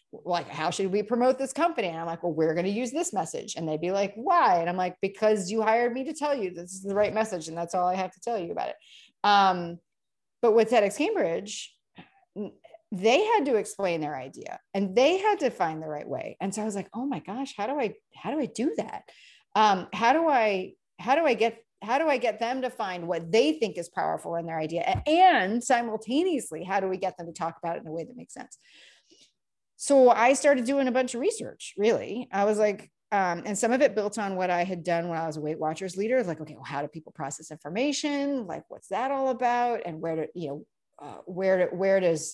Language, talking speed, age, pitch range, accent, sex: English, 245 wpm, 30-49, 170-245 Hz, American, female